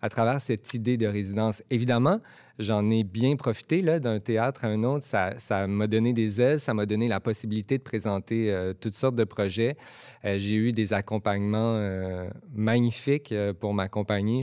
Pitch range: 105-120 Hz